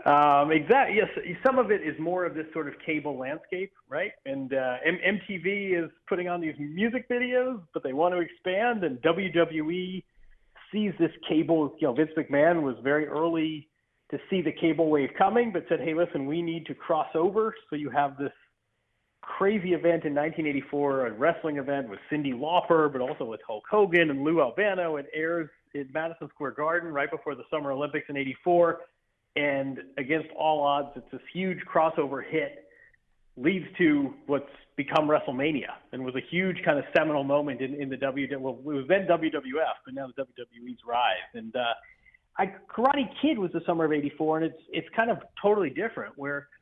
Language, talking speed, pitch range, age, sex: English, 190 wpm, 140-175 Hz, 40-59, male